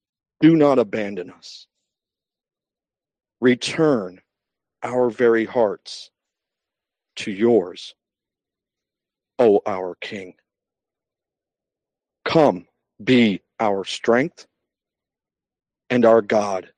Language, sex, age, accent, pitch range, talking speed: English, male, 50-69, American, 115-190 Hz, 70 wpm